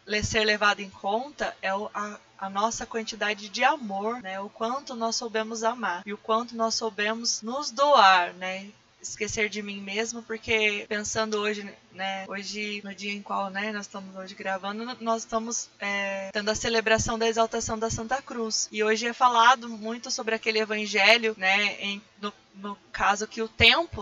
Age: 20-39